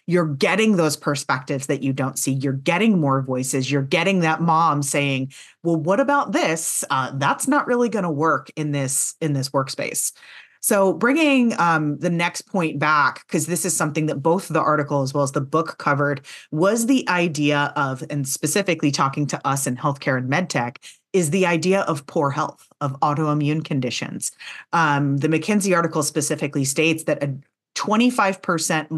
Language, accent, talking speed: English, American, 175 wpm